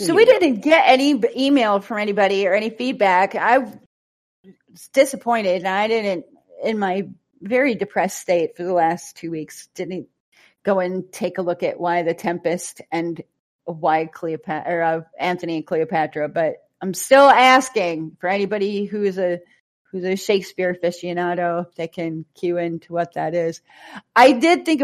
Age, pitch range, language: 30-49, 165-200 Hz, English